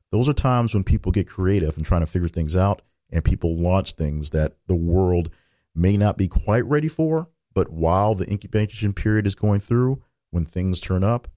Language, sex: English, male